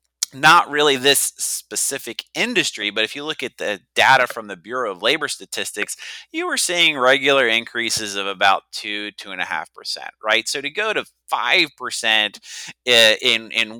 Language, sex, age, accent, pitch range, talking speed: English, male, 30-49, American, 110-170 Hz, 175 wpm